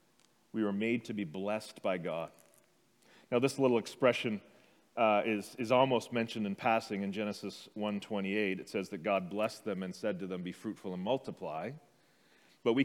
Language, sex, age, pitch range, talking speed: English, male, 40-59, 110-135 Hz, 175 wpm